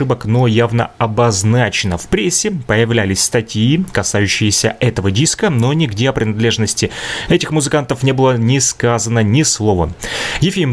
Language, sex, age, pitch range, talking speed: Russian, male, 30-49, 110-135 Hz, 130 wpm